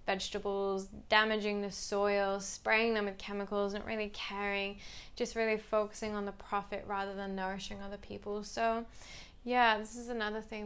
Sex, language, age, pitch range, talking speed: female, English, 20-39, 205-235 Hz, 160 wpm